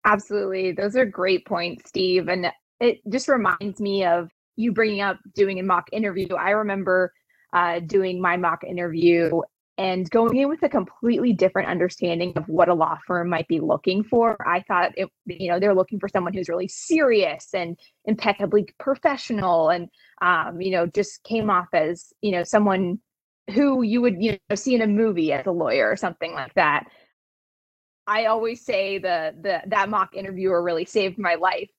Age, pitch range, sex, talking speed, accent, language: 20-39, 180-220 Hz, female, 185 wpm, American, English